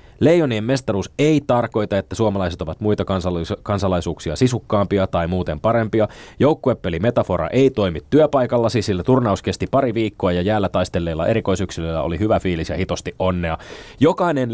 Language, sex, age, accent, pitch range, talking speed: Finnish, male, 20-39, native, 90-115 Hz, 140 wpm